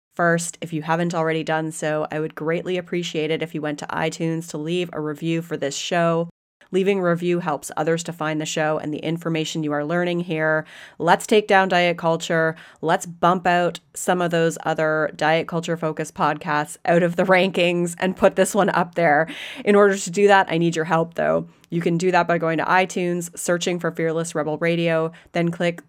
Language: English